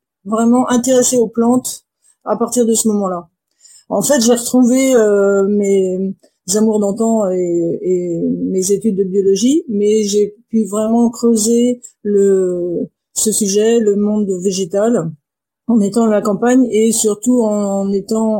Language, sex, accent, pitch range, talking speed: French, female, French, 195-235 Hz, 135 wpm